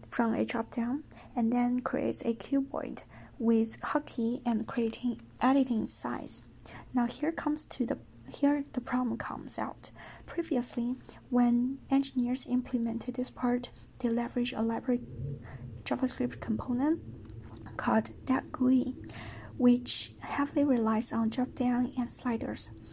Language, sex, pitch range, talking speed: English, female, 225-255 Hz, 125 wpm